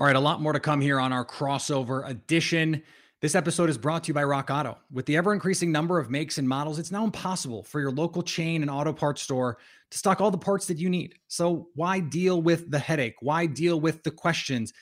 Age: 30-49